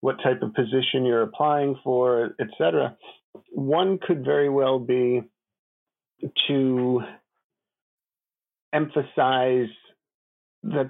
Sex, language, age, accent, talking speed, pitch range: male, English, 50-69, American, 95 wpm, 120-140 Hz